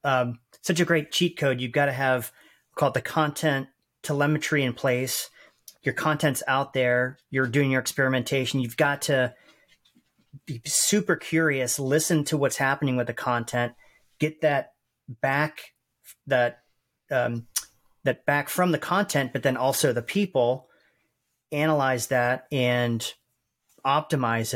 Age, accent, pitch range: 40-59, American, 125-145 Hz